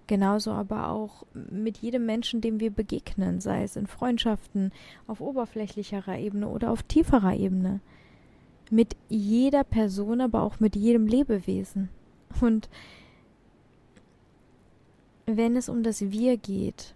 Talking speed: 125 wpm